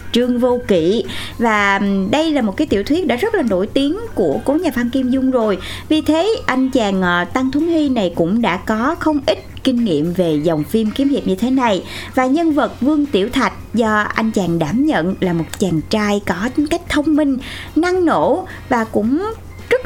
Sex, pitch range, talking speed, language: female, 195-295 Hz, 210 wpm, Vietnamese